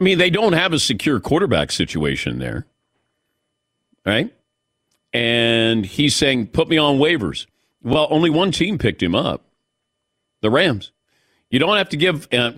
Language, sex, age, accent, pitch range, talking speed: English, male, 50-69, American, 115-155 Hz, 155 wpm